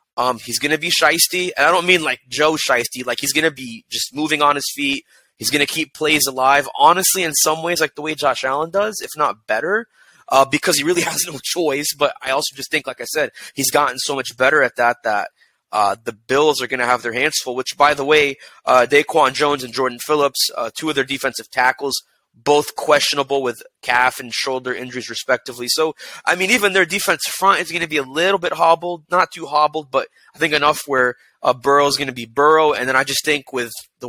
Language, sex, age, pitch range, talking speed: English, male, 20-39, 130-155 Hz, 240 wpm